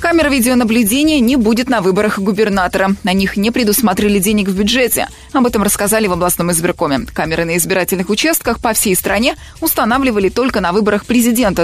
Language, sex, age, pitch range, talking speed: Russian, female, 20-39, 195-255 Hz, 165 wpm